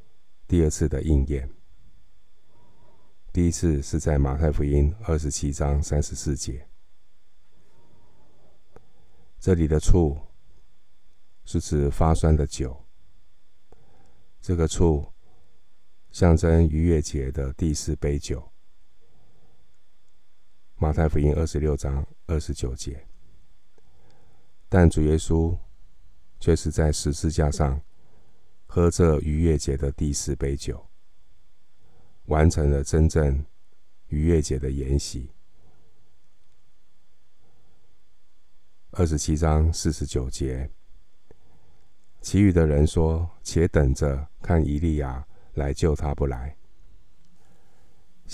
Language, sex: Chinese, male